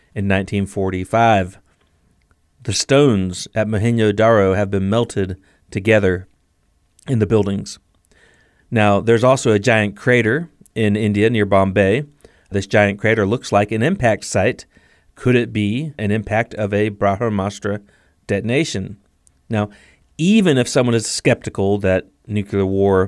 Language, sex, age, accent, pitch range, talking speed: English, male, 40-59, American, 100-120 Hz, 130 wpm